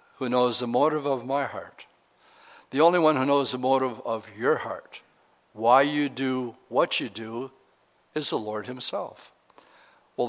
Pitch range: 120-155 Hz